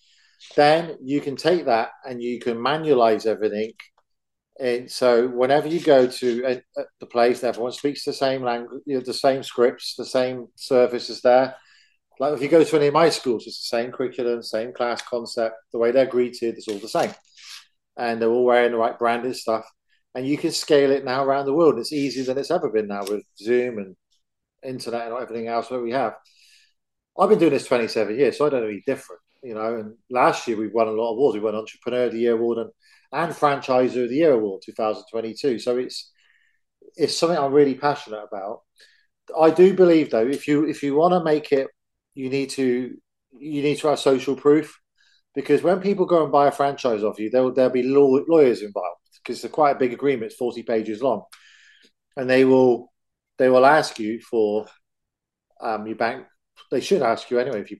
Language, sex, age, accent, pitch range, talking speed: English, male, 40-59, British, 115-145 Hz, 210 wpm